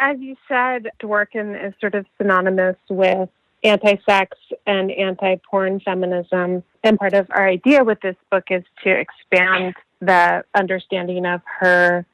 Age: 30-49